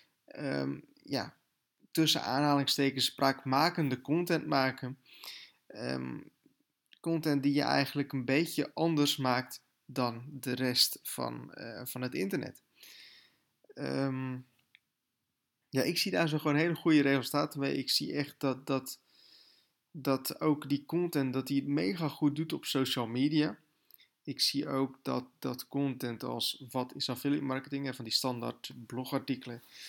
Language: Dutch